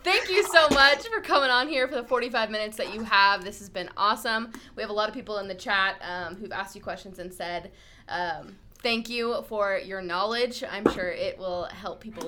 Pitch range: 195-245 Hz